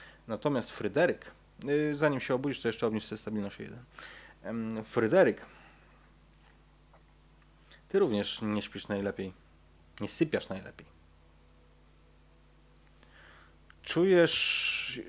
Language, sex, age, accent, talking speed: Polish, male, 30-49, native, 80 wpm